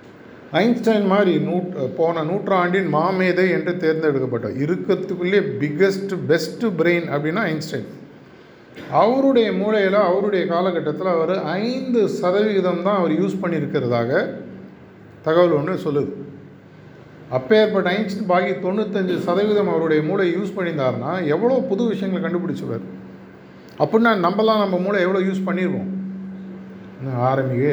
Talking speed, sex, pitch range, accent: 105 wpm, male, 150-195 Hz, native